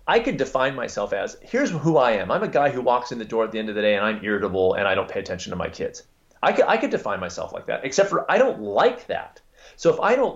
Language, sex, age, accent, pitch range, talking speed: English, male, 30-49, American, 110-160 Hz, 300 wpm